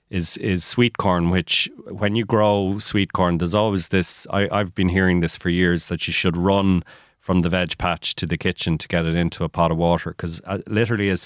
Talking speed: 225 wpm